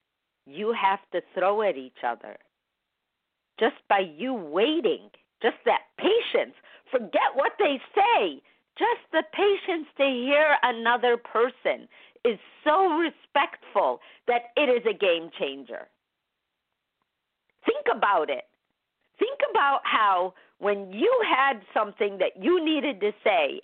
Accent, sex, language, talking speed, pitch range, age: American, female, English, 125 wpm, 195-315 Hz, 50-69